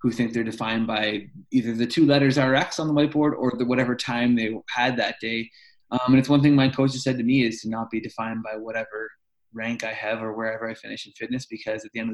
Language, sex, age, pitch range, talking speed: English, male, 20-39, 115-135 Hz, 260 wpm